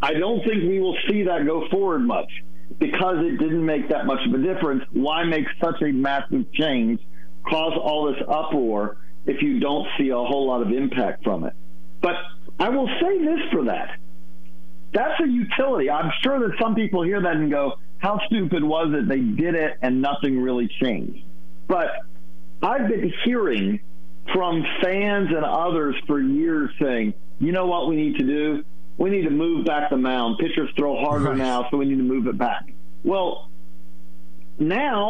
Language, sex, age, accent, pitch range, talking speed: English, male, 50-69, American, 115-185 Hz, 185 wpm